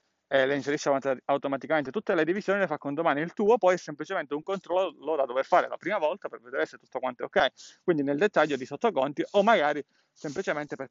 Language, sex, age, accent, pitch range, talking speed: Italian, male, 30-49, native, 130-160 Hz, 215 wpm